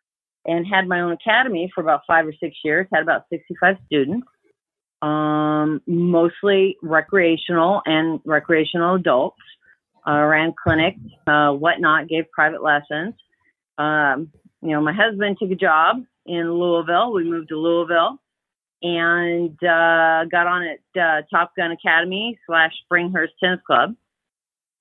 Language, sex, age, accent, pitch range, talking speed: English, female, 40-59, American, 160-185 Hz, 140 wpm